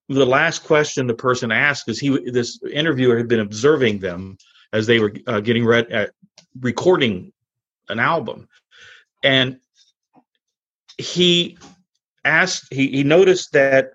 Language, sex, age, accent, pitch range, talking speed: English, male, 40-59, American, 110-140 Hz, 135 wpm